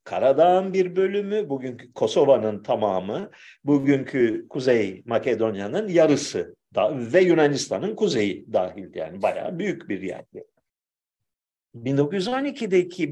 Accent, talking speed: native, 95 wpm